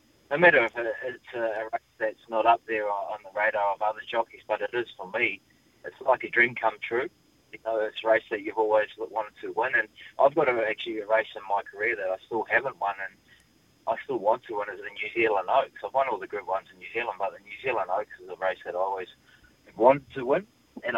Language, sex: English, male